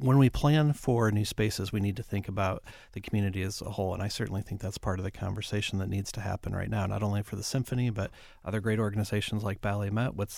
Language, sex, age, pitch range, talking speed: English, male, 30-49, 100-115 Hz, 255 wpm